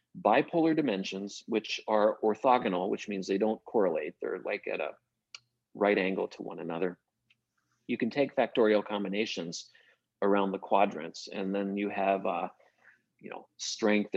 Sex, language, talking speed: male, English, 150 wpm